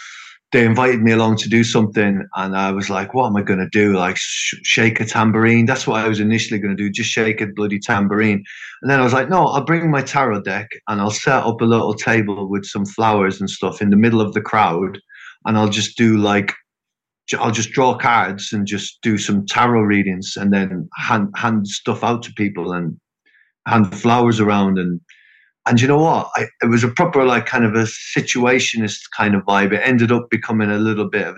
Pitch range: 100-115 Hz